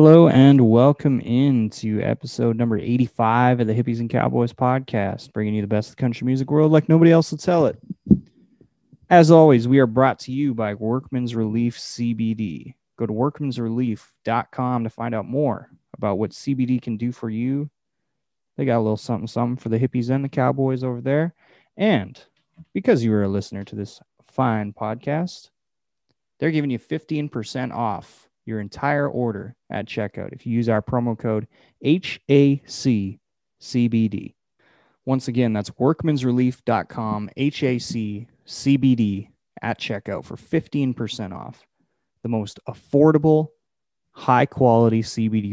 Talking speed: 140 wpm